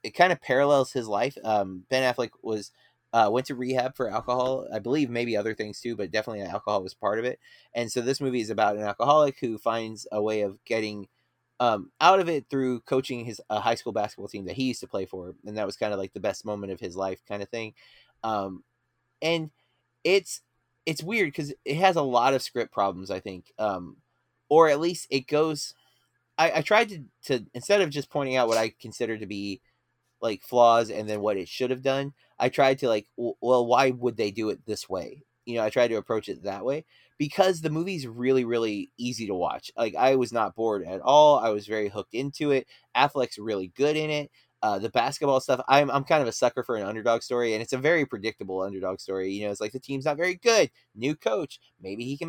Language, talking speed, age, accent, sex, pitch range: English, 235 wpm, 20-39, American, male, 110-140 Hz